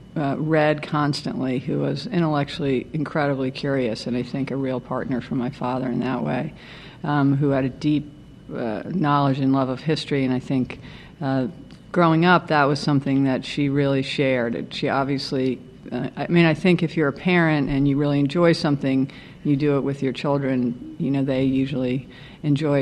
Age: 50-69